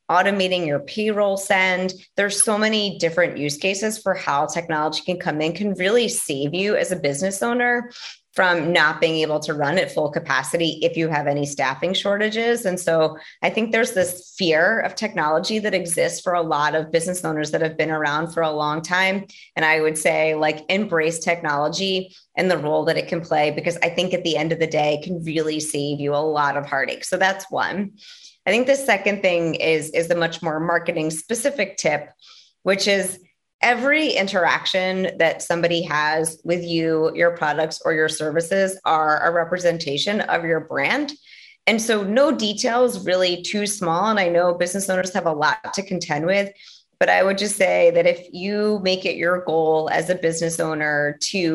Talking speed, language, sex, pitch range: 195 wpm, English, female, 155-195 Hz